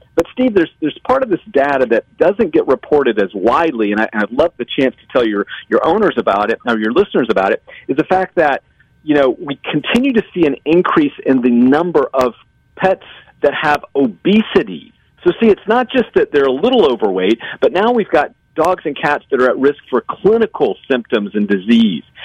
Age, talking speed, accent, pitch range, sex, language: 40-59, 215 wpm, American, 130-215 Hz, male, English